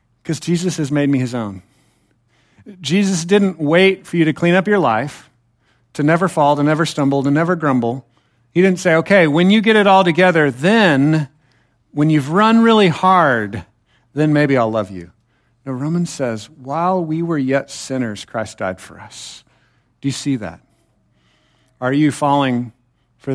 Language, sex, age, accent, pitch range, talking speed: English, male, 50-69, American, 120-155 Hz, 170 wpm